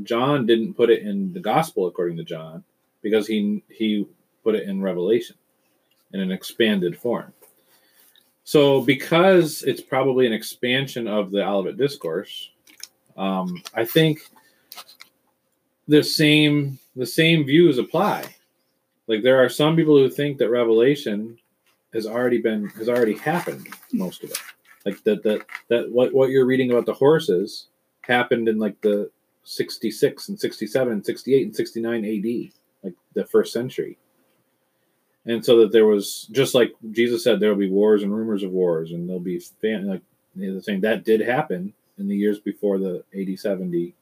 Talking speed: 160 wpm